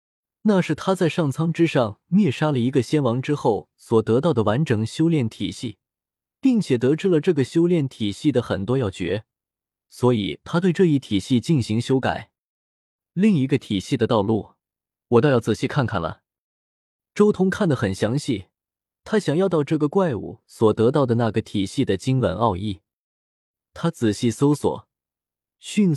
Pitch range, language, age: 110-165 Hz, Chinese, 20-39